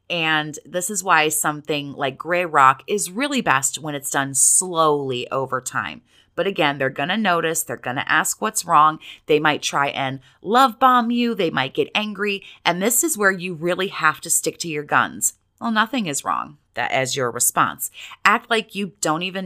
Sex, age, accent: female, 30-49, American